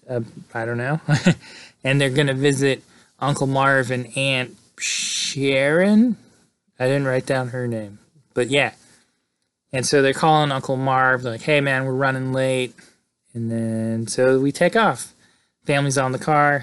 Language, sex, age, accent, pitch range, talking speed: English, male, 20-39, American, 120-140 Hz, 160 wpm